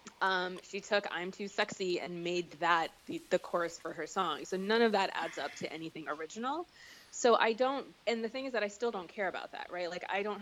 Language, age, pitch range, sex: English, 20-39, 165-200 Hz, female